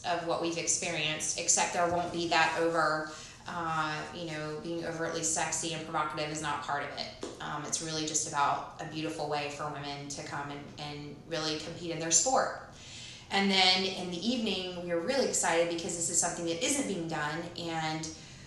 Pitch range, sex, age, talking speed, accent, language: 165-195 Hz, female, 20-39, 195 wpm, American, English